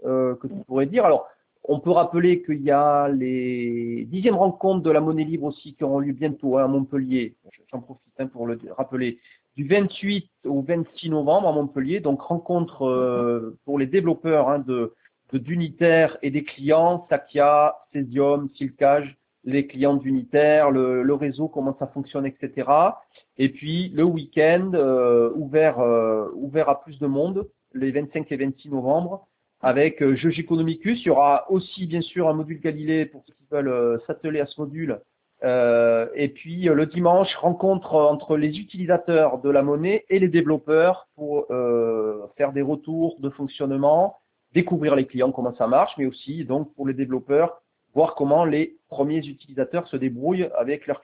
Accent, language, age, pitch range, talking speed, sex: French, French, 30-49, 135-165 Hz, 170 wpm, male